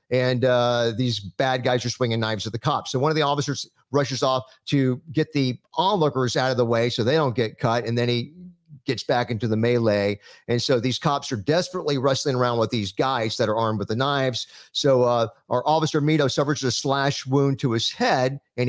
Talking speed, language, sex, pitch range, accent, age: 220 wpm, English, male, 120-145 Hz, American, 50-69